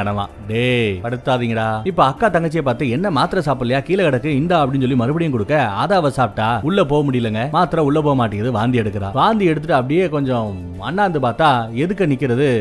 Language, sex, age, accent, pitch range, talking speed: Tamil, male, 30-49, native, 120-165 Hz, 165 wpm